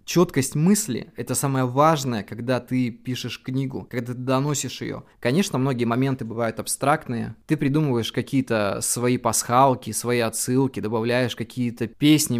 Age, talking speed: 20-39, 135 wpm